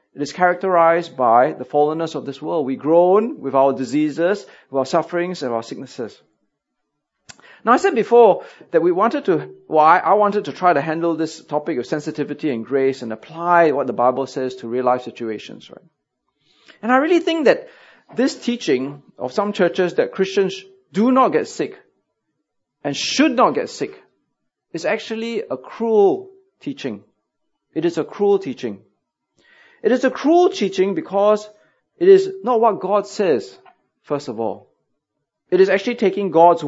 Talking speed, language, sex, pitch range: 170 wpm, English, male, 150-245 Hz